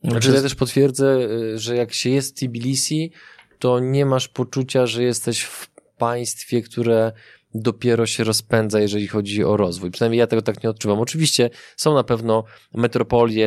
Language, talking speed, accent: Polish, 165 wpm, native